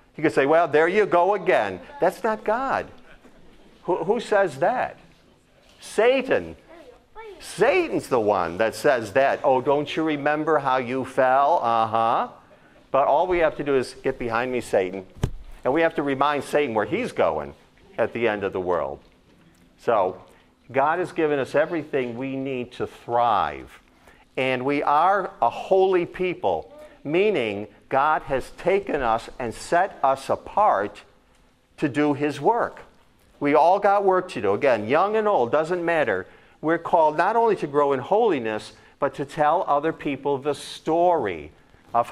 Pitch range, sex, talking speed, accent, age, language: 130-175 Hz, male, 160 wpm, American, 50-69, English